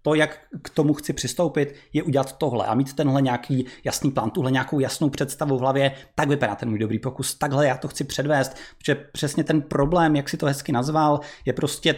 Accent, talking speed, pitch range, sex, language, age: native, 215 wpm, 125-150 Hz, male, Czech, 20-39